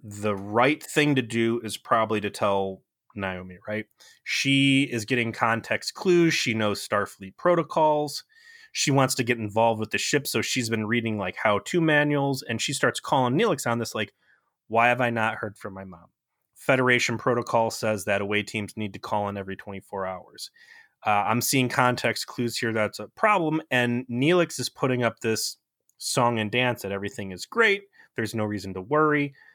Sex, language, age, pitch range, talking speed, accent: male, English, 30-49, 105-135 Hz, 185 wpm, American